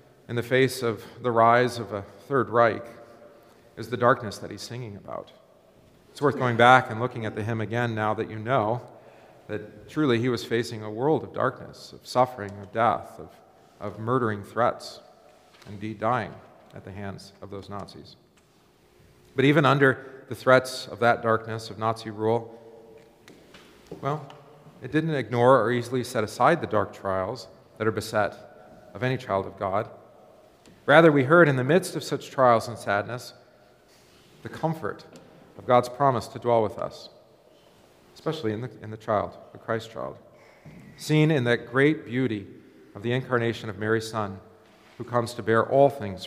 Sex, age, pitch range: male, 40-59, 105-125 Hz